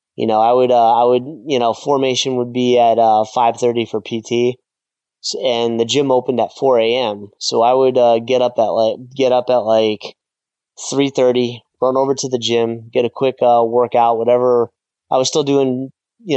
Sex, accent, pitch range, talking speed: male, American, 115-125 Hz, 195 wpm